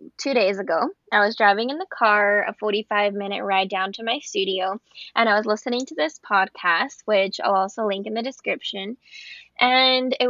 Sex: female